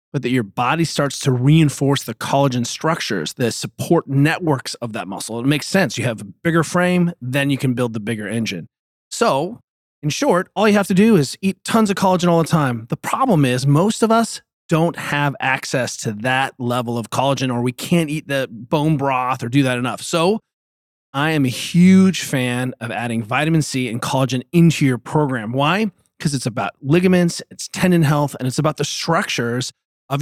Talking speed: 200 wpm